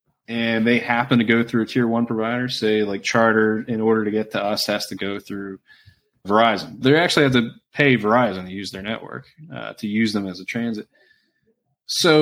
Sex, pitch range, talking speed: male, 110-125 Hz, 205 wpm